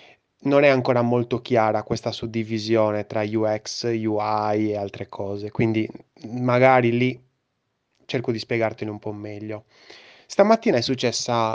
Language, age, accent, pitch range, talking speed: Italian, 20-39, native, 110-130 Hz, 130 wpm